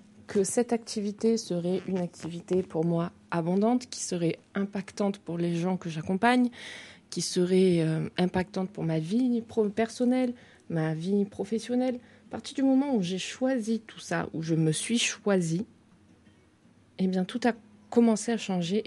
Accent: French